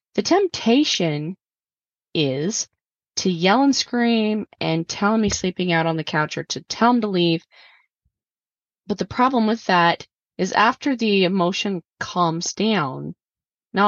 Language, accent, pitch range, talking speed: English, American, 165-215 Hz, 145 wpm